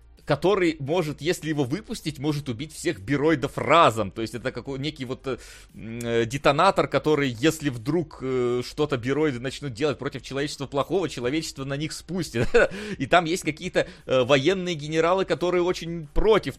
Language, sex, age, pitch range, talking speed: Russian, male, 30-49, 125-155 Hz, 150 wpm